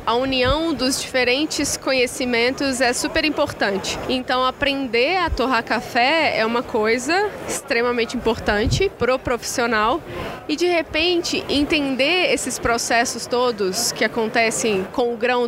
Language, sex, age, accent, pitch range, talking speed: Portuguese, female, 20-39, Brazilian, 235-285 Hz, 125 wpm